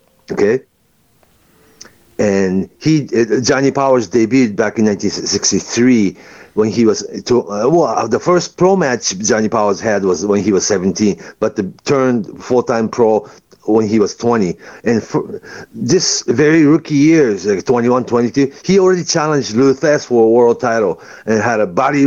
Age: 50-69